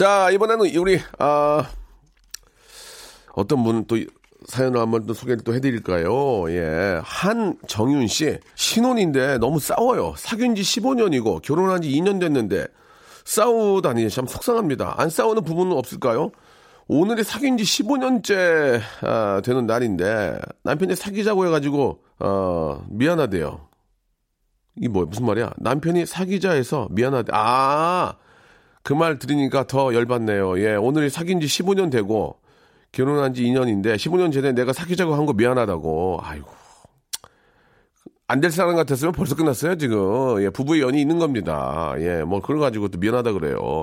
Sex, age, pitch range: male, 40-59, 115-185 Hz